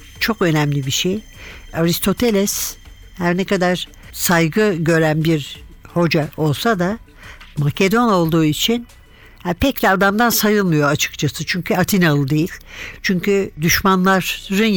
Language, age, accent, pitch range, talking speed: Turkish, 60-79, native, 160-200 Hz, 110 wpm